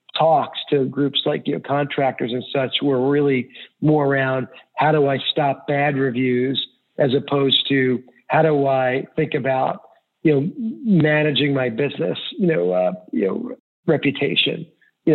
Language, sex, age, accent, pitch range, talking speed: English, male, 50-69, American, 135-160 Hz, 155 wpm